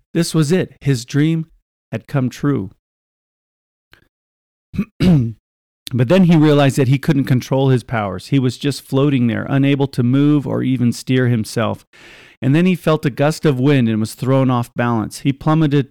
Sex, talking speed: male, 170 wpm